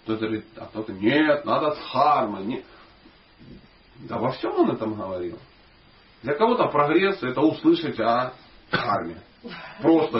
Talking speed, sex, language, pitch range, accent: 130 wpm, male, Russian, 115-185 Hz, native